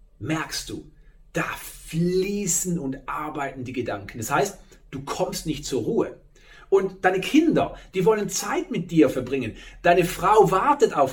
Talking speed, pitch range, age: 150 wpm, 135-185 Hz, 40-59